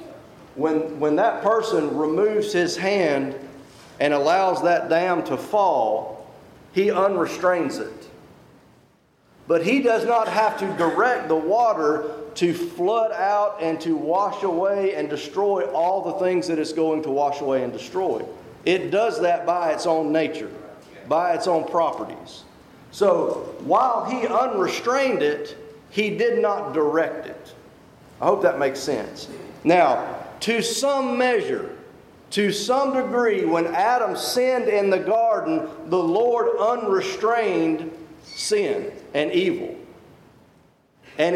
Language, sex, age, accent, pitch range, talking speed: English, male, 40-59, American, 165-260 Hz, 130 wpm